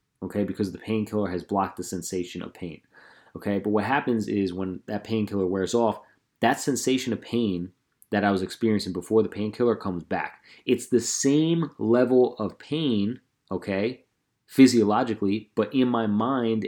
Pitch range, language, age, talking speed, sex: 90-110 Hz, English, 30-49, 160 wpm, male